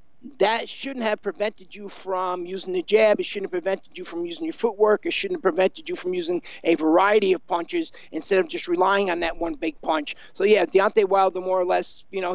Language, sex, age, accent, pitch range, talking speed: English, male, 50-69, American, 185-220 Hz, 230 wpm